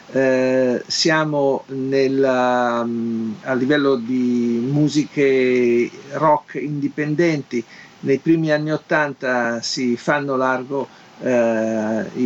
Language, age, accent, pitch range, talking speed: Italian, 50-69, native, 130-155 Hz, 90 wpm